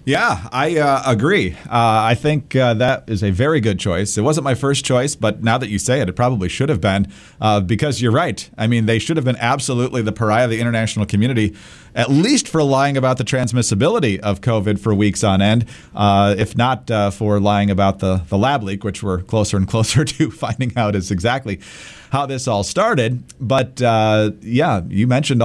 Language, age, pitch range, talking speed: English, 40-59, 105-140 Hz, 210 wpm